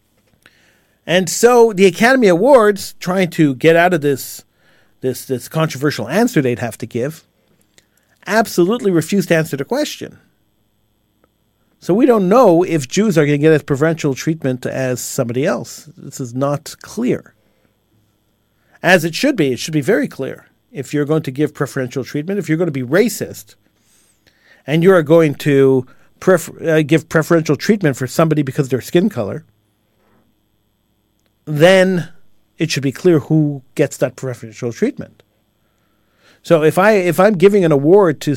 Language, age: English, 50-69